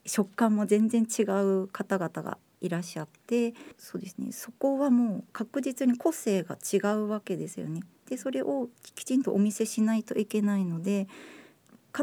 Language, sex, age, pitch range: Japanese, female, 50-69, 190-245 Hz